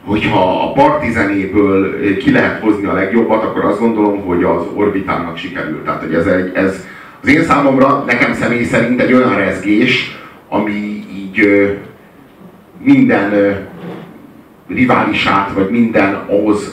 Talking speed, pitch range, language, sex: 135 wpm, 95-105 Hz, Hungarian, male